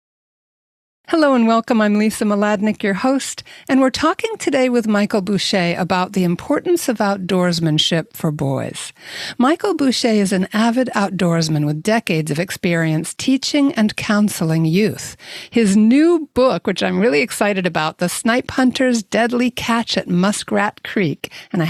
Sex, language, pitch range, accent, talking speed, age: female, English, 180-245 Hz, American, 150 wpm, 60-79